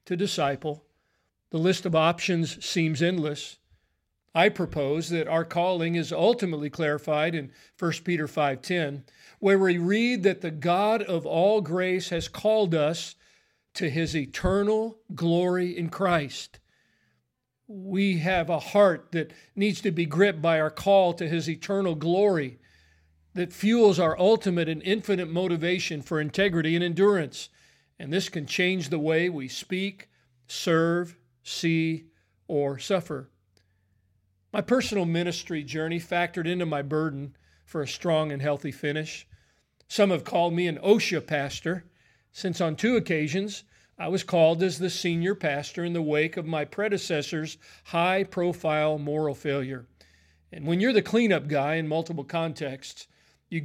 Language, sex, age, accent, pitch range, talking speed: English, male, 50-69, American, 150-185 Hz, 145 wpm